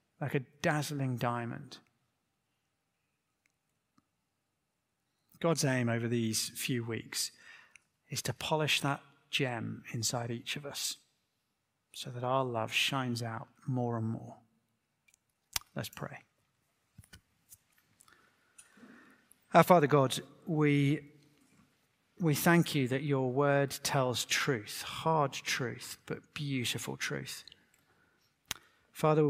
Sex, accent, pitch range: male, British, 120-150 Hz